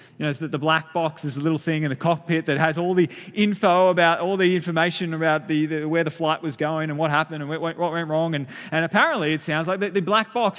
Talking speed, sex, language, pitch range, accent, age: 260 wpm, male, English, 155-200 Hz, Australian, 20-39